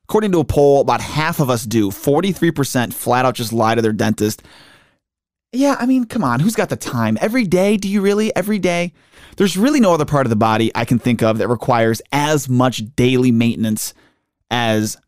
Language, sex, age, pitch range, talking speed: English, male, 20-39, 120-155 Hz, 205 wpm